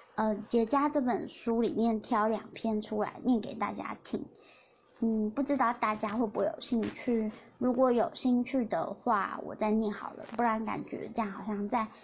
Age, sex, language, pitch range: 20-39, male, Chinese, 215-265 Hz